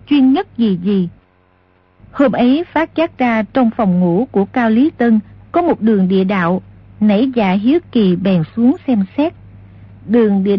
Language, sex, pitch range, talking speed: Vietnamese, female, 190-255 Hz, 175 wpm